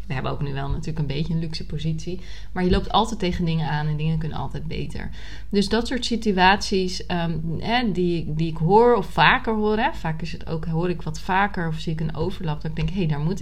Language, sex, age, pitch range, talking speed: Dutch, female, 30-49, 160-195 Hz, 255 wpm